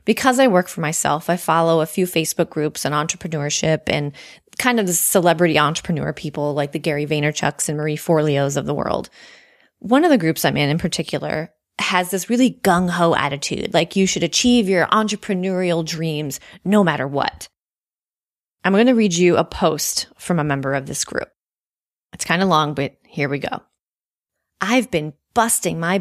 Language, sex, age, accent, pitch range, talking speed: English, female, 20-39, American, 155-205 Hz, 180 wpm